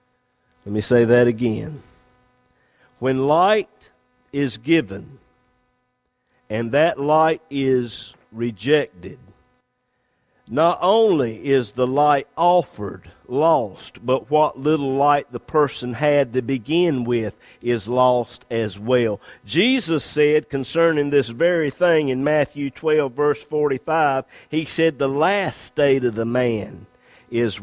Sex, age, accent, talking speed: male, 50-69, American, 120 wpm